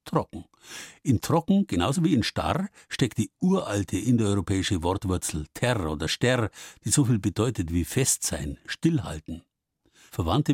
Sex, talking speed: male, 135 wpm